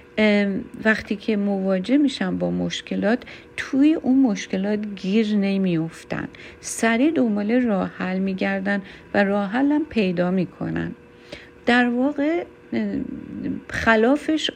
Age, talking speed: 50-69, 105 wpm